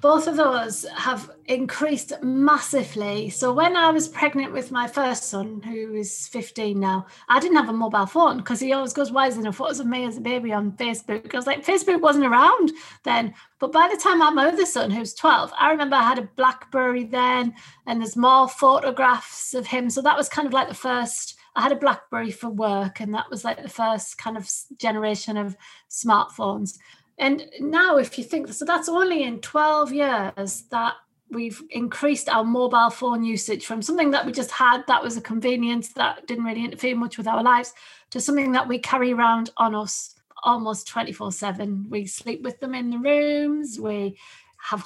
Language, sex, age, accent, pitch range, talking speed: English, female, 40-59, British, 220-280 Hz, 200 wpm